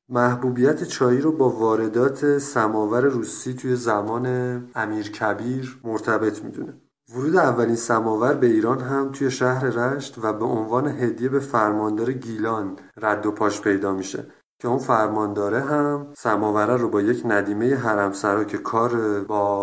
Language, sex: Persian, male